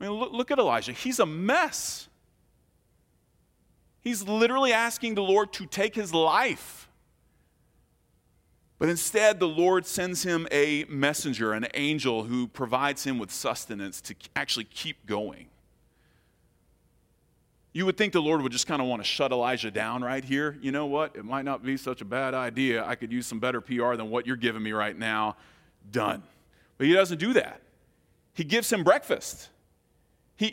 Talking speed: 170 wpm